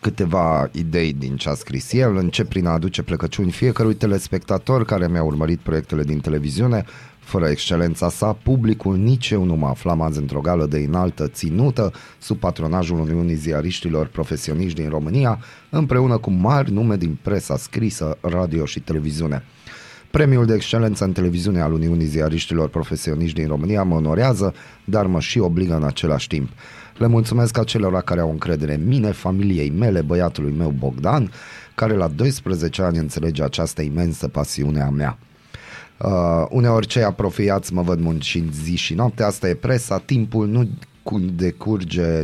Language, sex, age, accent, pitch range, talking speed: Romanian, male, 30-49, native, 80-110 Hz, 155 wpm